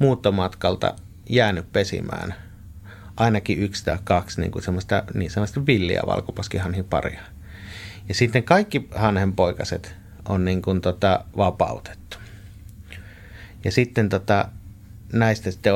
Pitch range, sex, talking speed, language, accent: 95-105 Hz, male, 105 wpm, Finnish, native